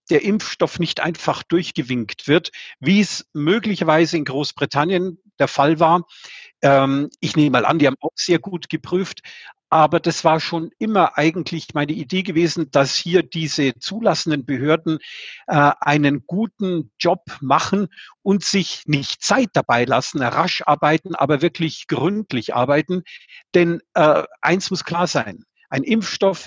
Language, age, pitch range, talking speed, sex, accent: German, 50-69, 145-175 Hz, 140 wpm, male, German